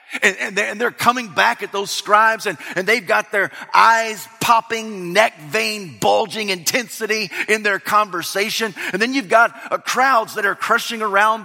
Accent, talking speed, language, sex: American, 170 wpm, English, male